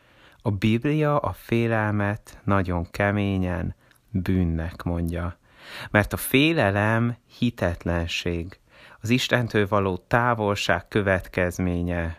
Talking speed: 85 wpm